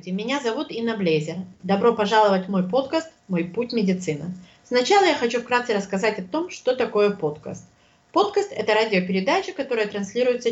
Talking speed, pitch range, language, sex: 160 wpm, 185-265 Hz, English, female